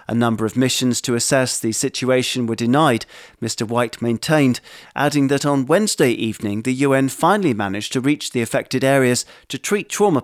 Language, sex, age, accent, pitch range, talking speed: English, male, 40-59, British, 120-150 Hz, 175 wpm